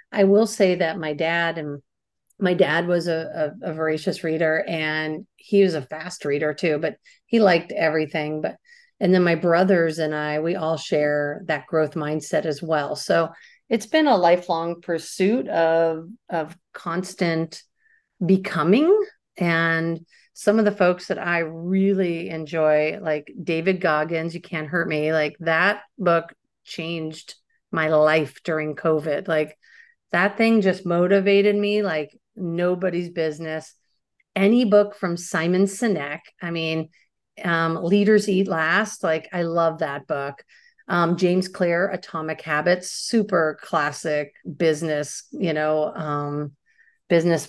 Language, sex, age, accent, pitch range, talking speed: English, female, 40-59, American, 160-190 Hz, 140 wpm